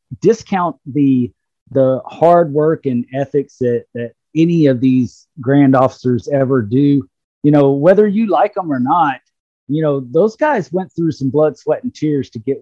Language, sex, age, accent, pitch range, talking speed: English, male, 40-59, American, 125-155 Hz, 175 wpm